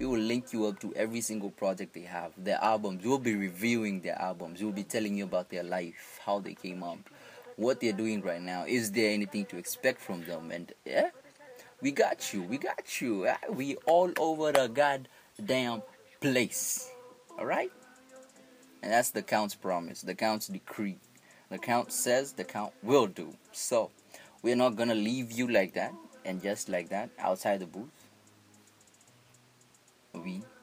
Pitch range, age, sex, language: 100-145 Hz, 20-39, male, English